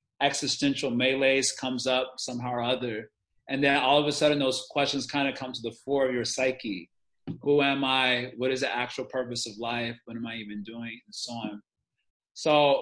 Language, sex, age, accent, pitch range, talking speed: English, male, 30-49, American, 120-140 Hz, 200 wpm